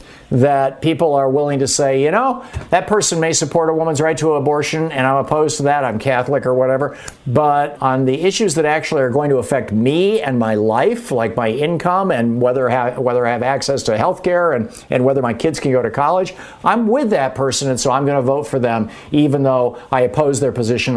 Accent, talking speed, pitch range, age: American, 225 wpm, 115-150 Hz, 50-69